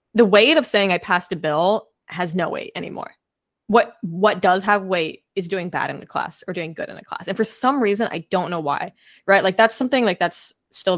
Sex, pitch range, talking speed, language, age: female, 170-210 Hz, 240 wpm, English, 10-29